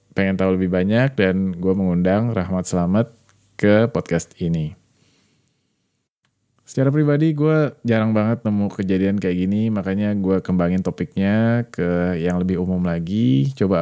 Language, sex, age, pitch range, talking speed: Indonesian, male, 20-39, 90-110 Hz, 135 wpm